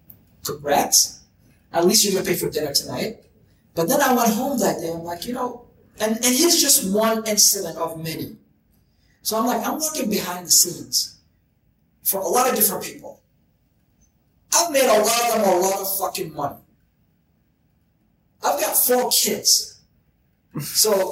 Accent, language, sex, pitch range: American, English, male, 180-230 Hz